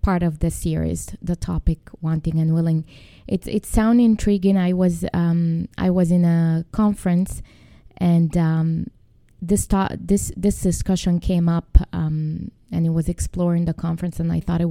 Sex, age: female, 20-39